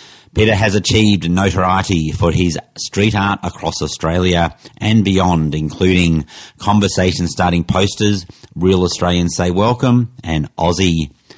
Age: 30-49